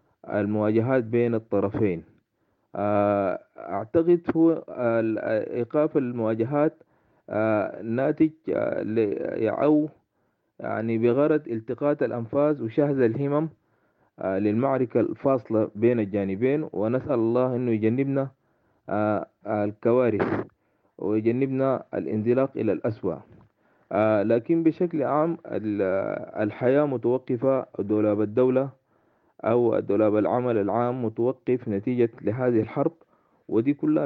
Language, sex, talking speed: English, male, 75 wpm